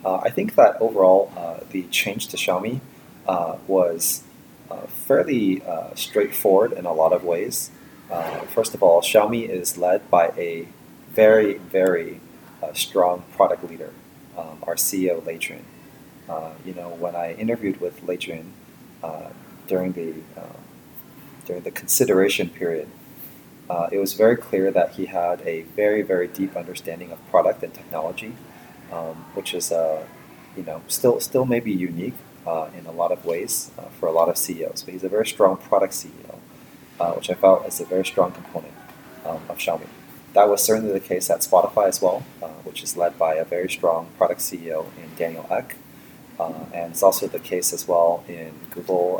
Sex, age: male, 30-49